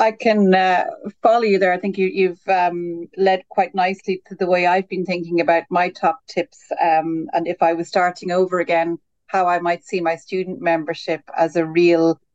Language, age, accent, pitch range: English, 40-59, Irish, 165-195 Hz